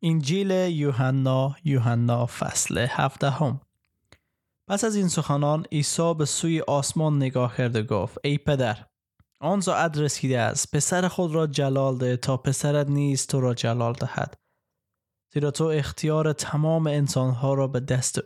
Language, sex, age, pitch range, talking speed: Persian, male, 20-39, 130-155 Hz, 145 wpm